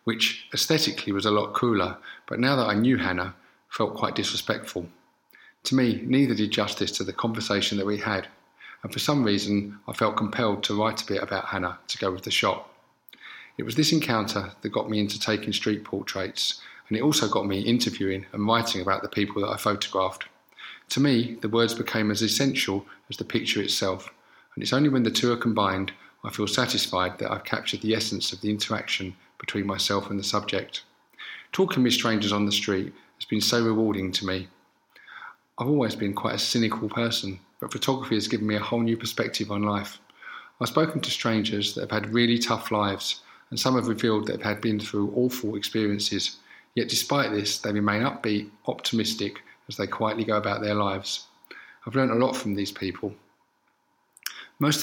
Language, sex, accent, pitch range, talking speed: English, male, British, 100-115 Hz, 195 wpm